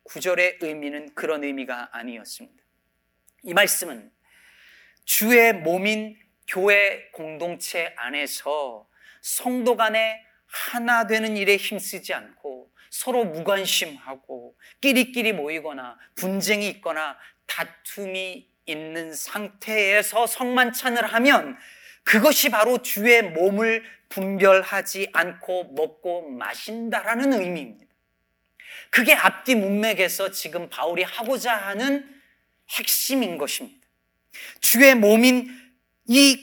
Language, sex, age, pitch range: Korean, male, 40-59, 180-245 Hz